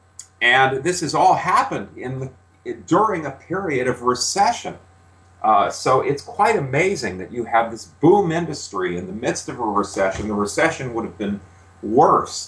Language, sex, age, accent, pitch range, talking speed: English, male, 40-59, American, 100-135 Hz, 170 wpm